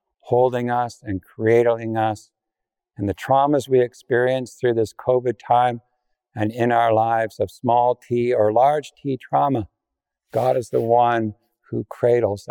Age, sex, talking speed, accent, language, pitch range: 50-69, male, 150 wpm, American, English, 110-130 Hz